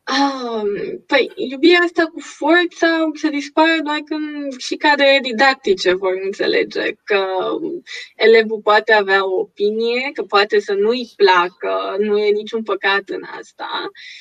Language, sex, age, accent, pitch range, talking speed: Romanian, female, 20-39, native, 235-350 Hz, 135 wpm